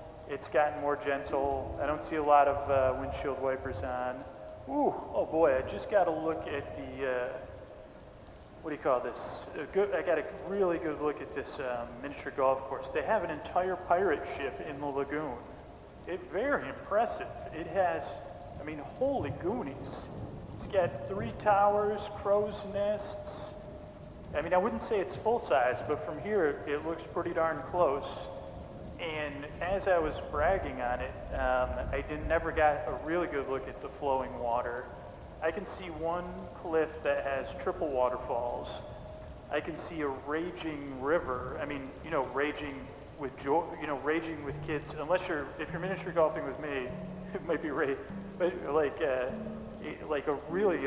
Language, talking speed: English, 175 wpm